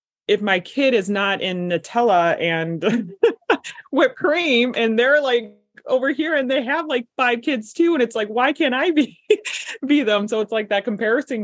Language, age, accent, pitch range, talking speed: English, 20-39, American, 160-225 Hz, 190 wpm